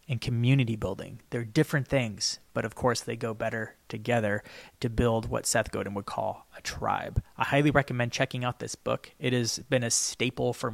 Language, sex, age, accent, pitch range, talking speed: English, male, 20-39, American, 115-140 Hz, 195 wpm